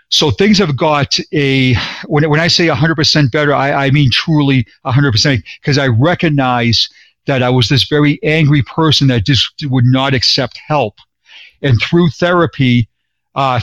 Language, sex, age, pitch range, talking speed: English, male, 50-69, 125-155 Hz, 160 wpm